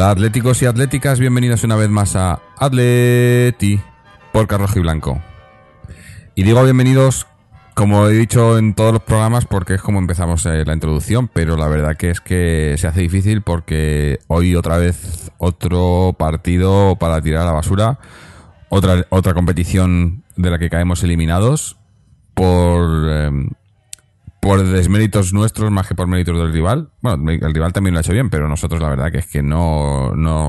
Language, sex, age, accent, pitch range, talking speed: Spanish, male, 30-49, Spanish, 80-105 Hz, 165 wpm